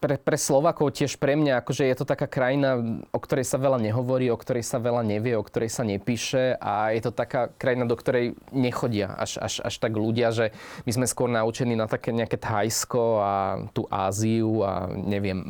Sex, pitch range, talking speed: male, 110-130 Hz, 200 wpm